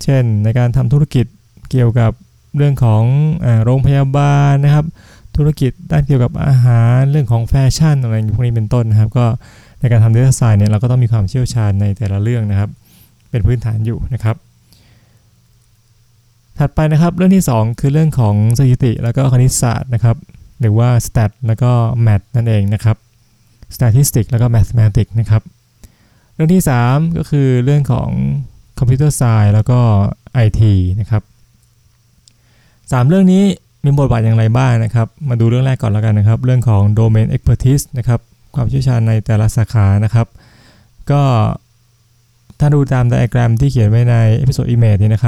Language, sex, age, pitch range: Thai, male, 20-39, 110-130 Hz